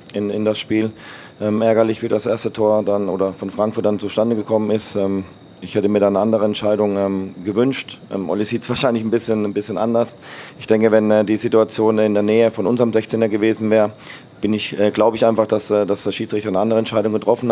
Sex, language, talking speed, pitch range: male, German, 225 wpm, 105-115 Hz